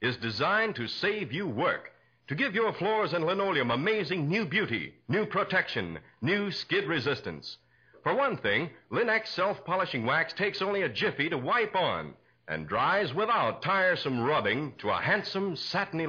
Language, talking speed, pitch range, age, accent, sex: English, 155 wpm, 175-220 Hz, 60-79, American, male